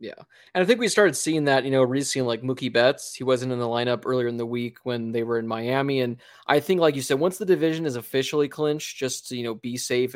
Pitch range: 125-155 Hz